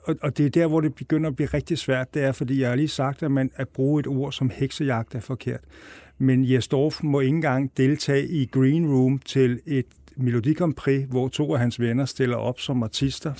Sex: male